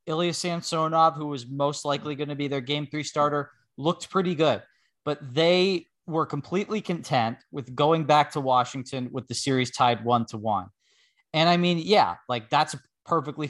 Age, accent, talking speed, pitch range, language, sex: 20-39, American, 180 wpm, 120-150 Hz, English, male